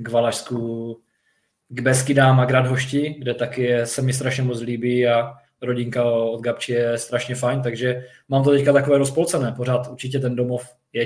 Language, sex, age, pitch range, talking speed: Czech, male, 20-39, 120-130 Hz, 165 wpm